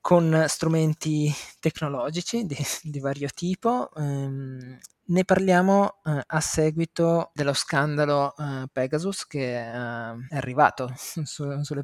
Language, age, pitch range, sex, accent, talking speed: Italian, 20-39, 135-160 Hz, male, native, 110 wpm